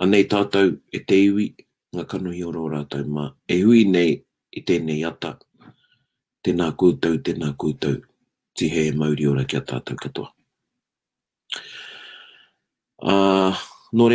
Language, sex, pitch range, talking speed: English, male, 85-110 Hz, 140 wpm